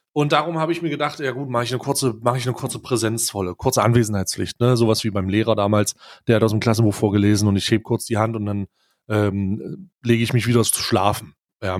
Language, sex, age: German, male, 30-49